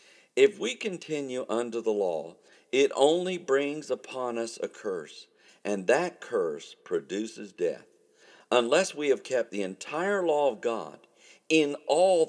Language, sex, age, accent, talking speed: English, male, 50-69, American, 140 wpm